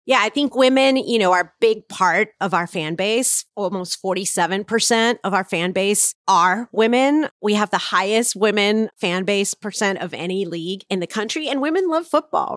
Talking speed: 190 wpm